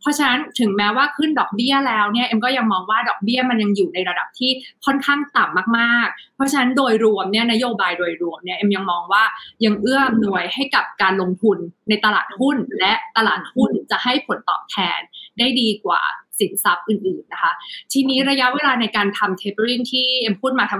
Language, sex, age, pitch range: Thai, female, 20-39, 200-255 Hz